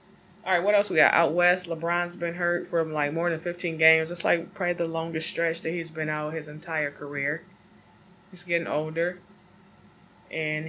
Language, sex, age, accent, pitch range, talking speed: English, female, 20-39, American, 150-175 Hz, 185 wpm